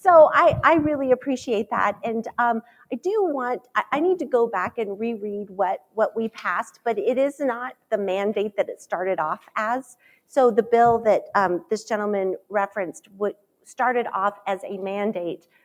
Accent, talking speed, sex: American, 185 wpm, female